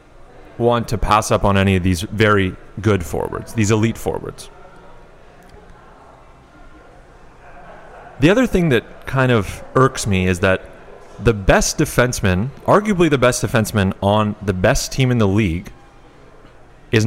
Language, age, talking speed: English, 30-49, 135 wpm